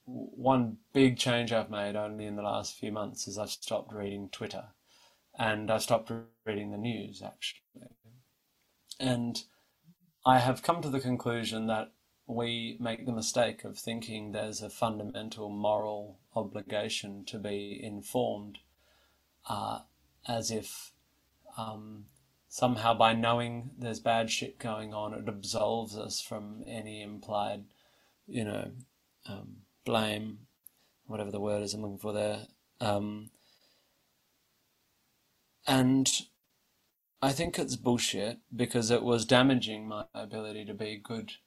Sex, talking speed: male, 130 wpm